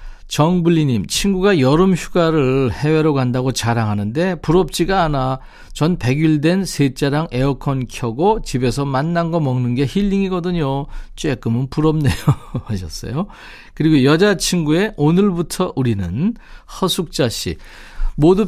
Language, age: Korean, 40-59